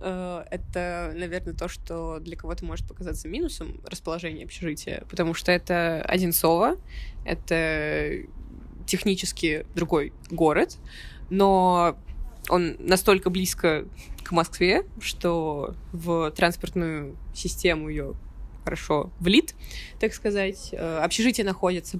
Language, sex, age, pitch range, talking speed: Russian, female, 20-39, 160-195 Hz, 100 wpm